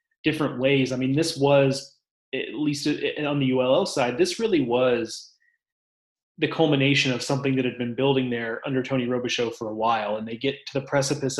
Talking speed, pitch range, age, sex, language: 190 wpm, 125-145 Hz, 30-49, male, English